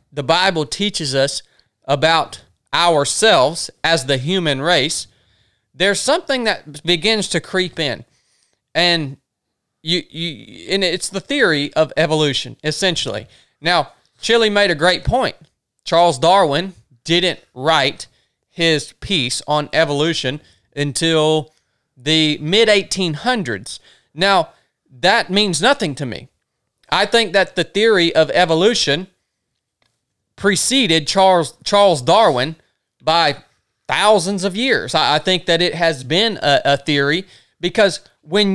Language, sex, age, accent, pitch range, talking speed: English, male, 30-49, American, 145-195 Hz, 120 wpm